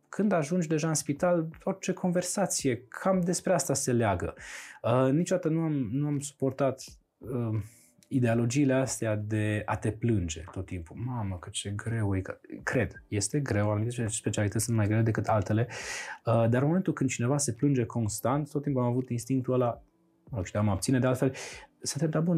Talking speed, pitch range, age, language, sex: 180 wpm, 110-150 Hz, 20-39, Romanian, male